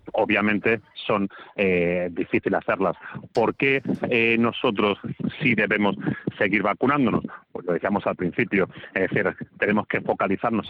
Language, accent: Spanish, Spanish